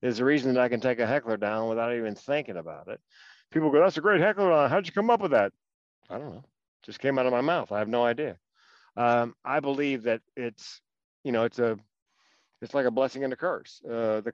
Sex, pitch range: male, 105-125 Hz